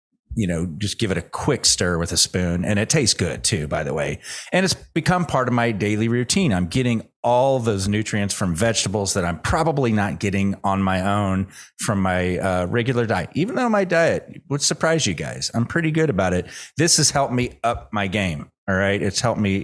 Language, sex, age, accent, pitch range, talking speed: English, male, 30-49, American, 95-130 Hz, 220 wpm